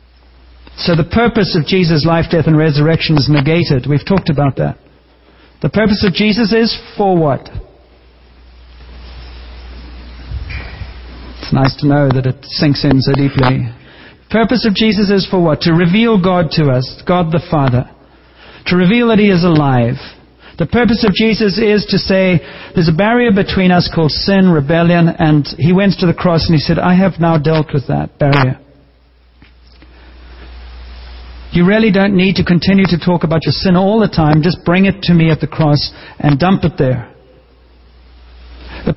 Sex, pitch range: male, 130-190 Hz